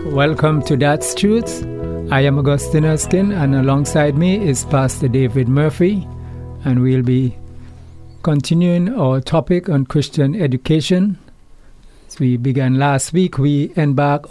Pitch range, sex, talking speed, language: 130-160 Hz, male, 130 wpm, English